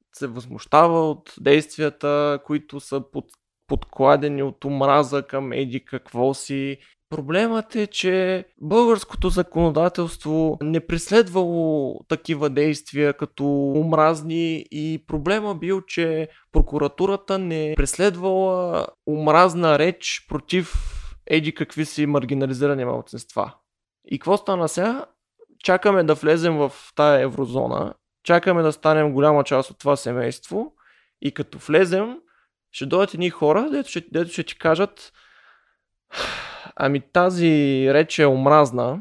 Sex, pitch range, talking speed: male, 140-175 Hz, 115 wpm